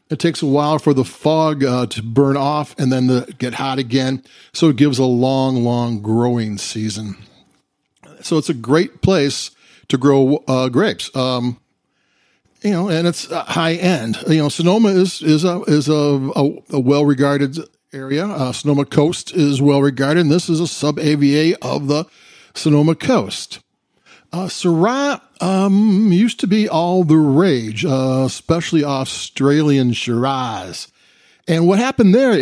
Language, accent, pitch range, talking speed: English, American, 130-165 Hz, 160 wpm